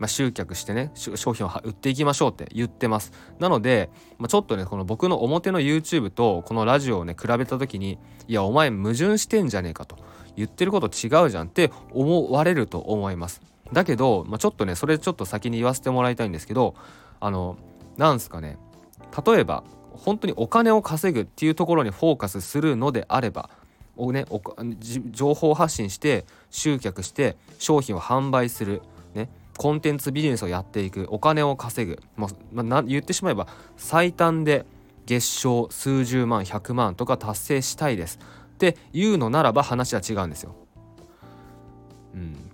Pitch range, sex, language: 100-150 Hz, male, Japanese